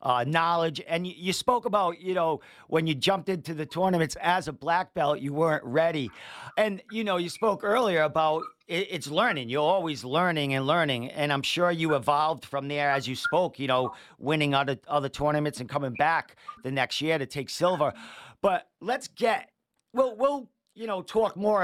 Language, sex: English, male